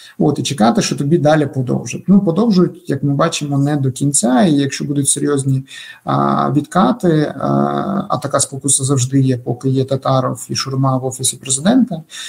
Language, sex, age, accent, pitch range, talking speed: Ukrainian, male, 50-69, native, 135-175 Hz, 170 wpm